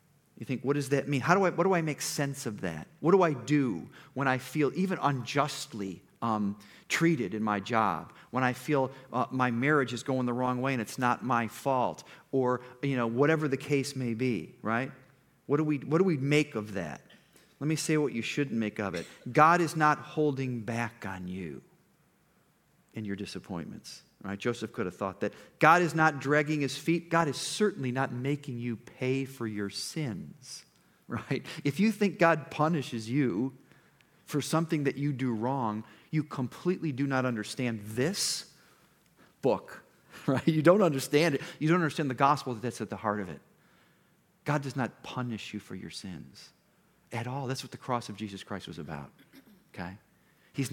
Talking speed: 190 wpm